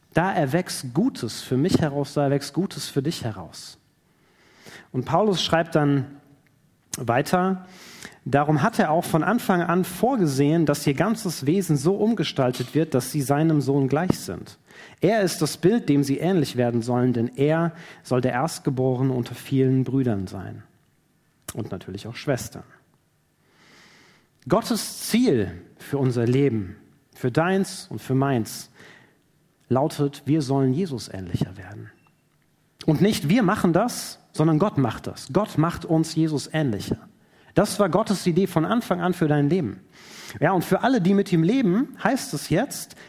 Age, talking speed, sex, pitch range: 40-59, 155 wpm, male, 135-180 Hz